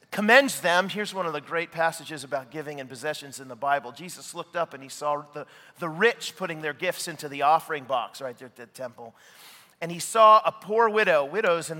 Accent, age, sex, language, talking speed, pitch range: American, 40-59, male, English, 225 wpm, 165-240 Hz